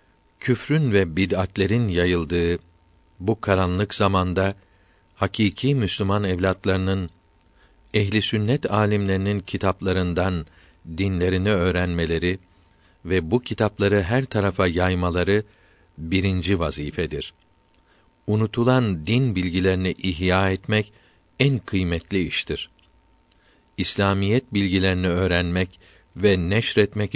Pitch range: 85-100 Hz